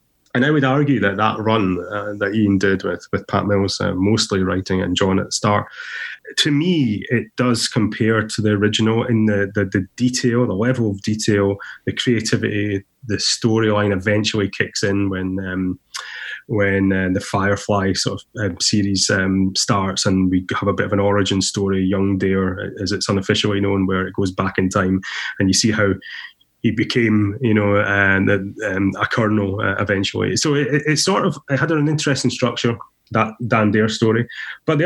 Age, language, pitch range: 20-39, English, 100-115 Hz